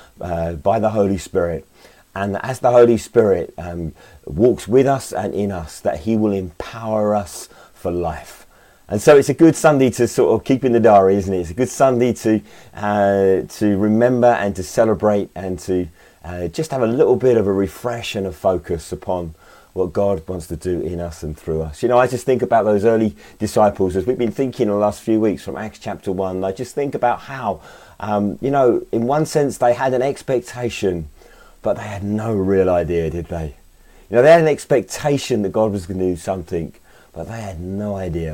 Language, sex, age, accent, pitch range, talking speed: English, male, 30-49, British, 85-110 Hz, 220 wpm